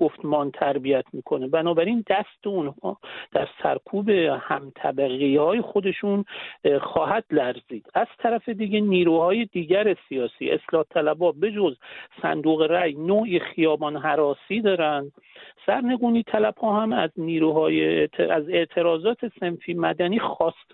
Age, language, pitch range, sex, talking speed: 50-69, English, 165-205 Hz, male, 115 wpm